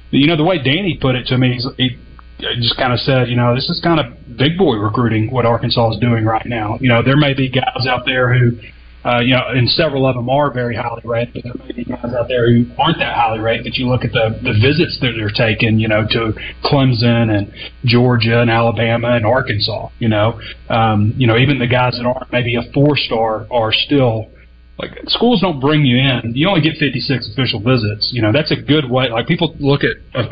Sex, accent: male, American